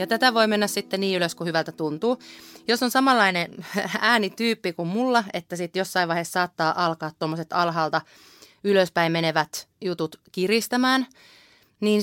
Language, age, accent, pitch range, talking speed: Finnish, 30-49, native, 170-245 Hz, 145 wpm